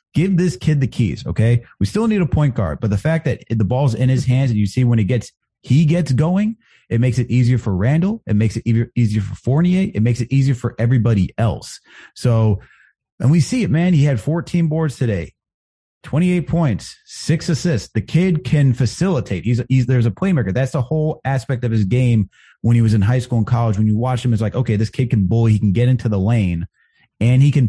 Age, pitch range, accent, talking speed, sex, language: 30-49, 110-140 Hz, American, 230 wpm, male, English